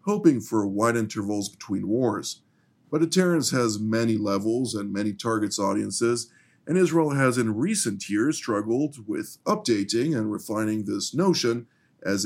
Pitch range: 110-130 Hz